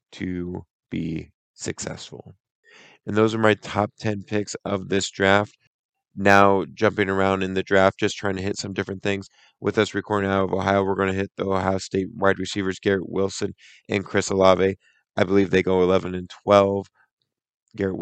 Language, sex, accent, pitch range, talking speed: English, male, American, 95-100 Hz, 180 wpm